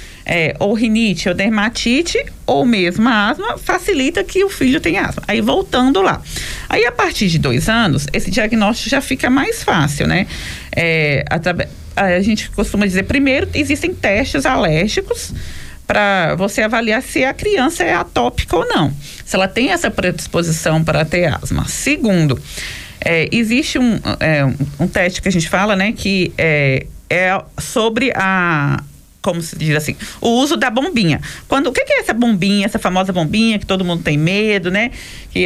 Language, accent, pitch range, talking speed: Portuguese, Brazilian, 170-235 Hz, 175 wpm